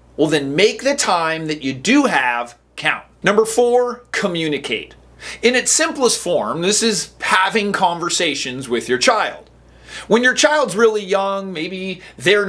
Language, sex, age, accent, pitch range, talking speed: English, male, 30-49, American, 155-240 Hz, 150 wpm